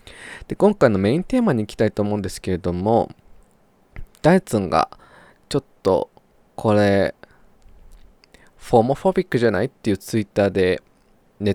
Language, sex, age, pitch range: Japanese, male, 20-39, 95-130 Hz